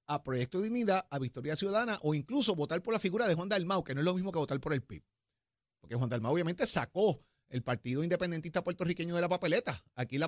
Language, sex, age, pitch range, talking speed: Spanish, male, 30-49, 135-195 Hz, 230 wpm